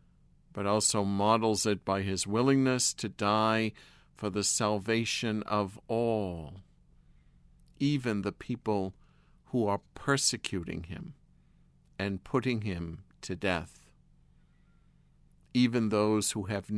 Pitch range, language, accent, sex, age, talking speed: 100-120 Hz, English, American, male, 50-69, 105 wpm